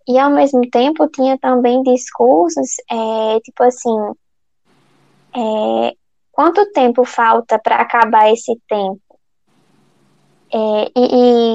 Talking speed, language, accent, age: 90 wpm, Portuguese, Brazilian, 10-29